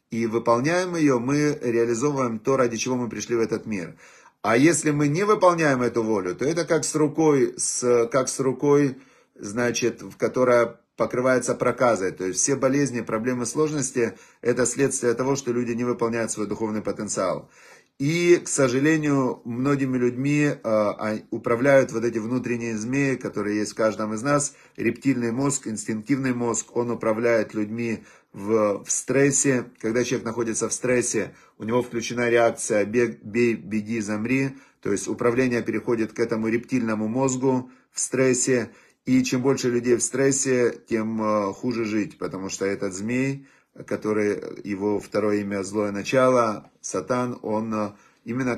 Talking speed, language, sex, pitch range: 145 wpm, Russian, male, 110-130 Hz